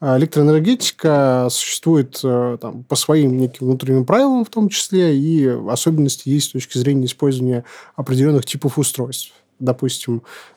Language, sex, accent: Russian, male, native